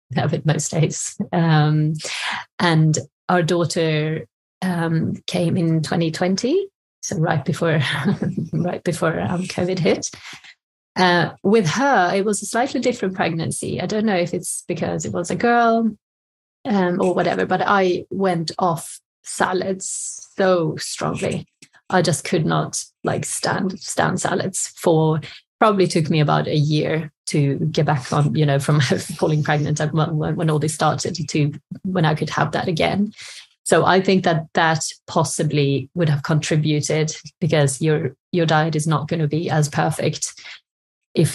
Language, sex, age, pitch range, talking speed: English, female, 30-49, 155-185 Hz, 150 wpm